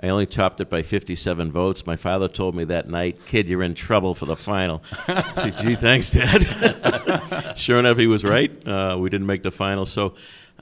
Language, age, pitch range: English, 50-69, 75-95 Hz